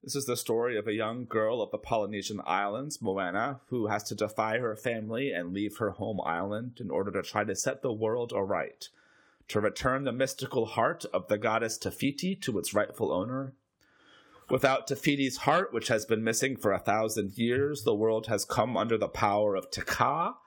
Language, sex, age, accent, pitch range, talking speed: English, male, 30-49, American, 105-135 Hz, 195 wpm